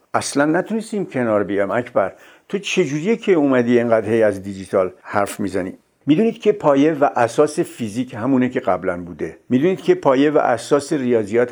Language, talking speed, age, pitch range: Persian, 160 wpm, 60-79, 125-170 Hz